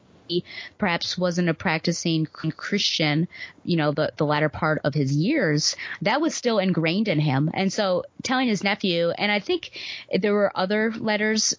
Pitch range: 160-200 Hz